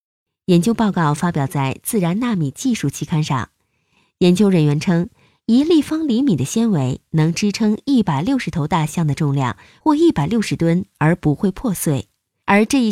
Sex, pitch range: female, 155-225 Hz